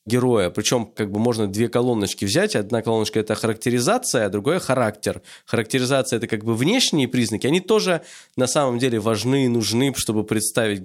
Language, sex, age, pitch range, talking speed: Russian, male, 20-39, 110-140 Hz, 185 wpm